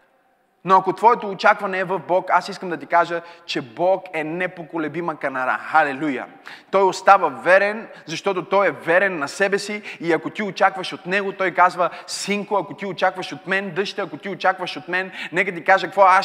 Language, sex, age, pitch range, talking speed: Bulgarian, male, 20-39, 185-240 Hz, 195 wpm